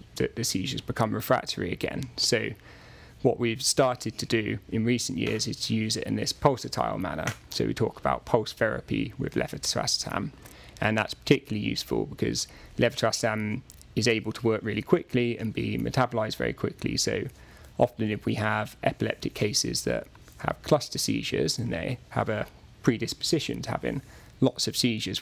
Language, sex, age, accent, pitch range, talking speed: English, male, 20-39, British, 110-120 Hz, 165 wpm